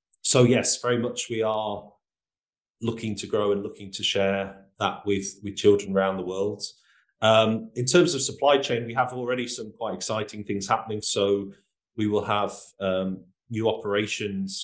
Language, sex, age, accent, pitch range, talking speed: English, male, 30-49, British, 95-105 Hz, 170 wpm